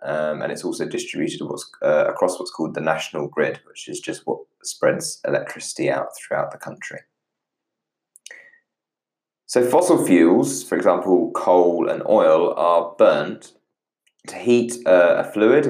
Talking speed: 140 wpm